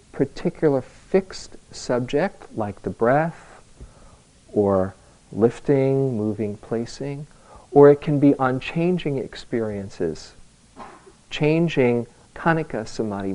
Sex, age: male, 50-69